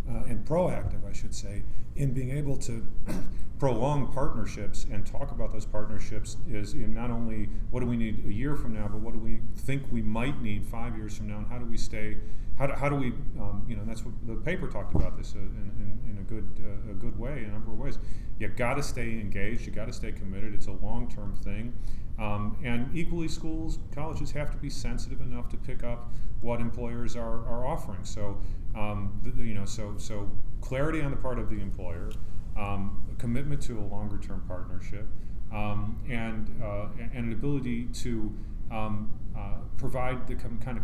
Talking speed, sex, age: 205 wpm, male, 40-59